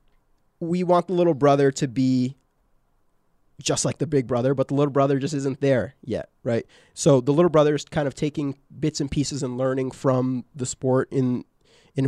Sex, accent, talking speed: male, American, 195 wpm